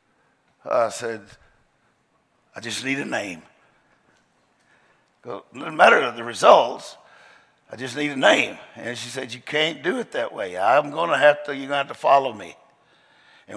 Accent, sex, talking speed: American, male, 175 wpm